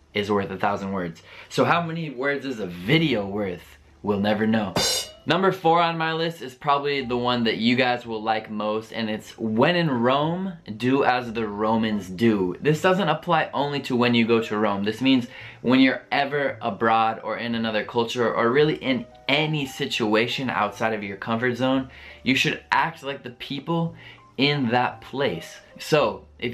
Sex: male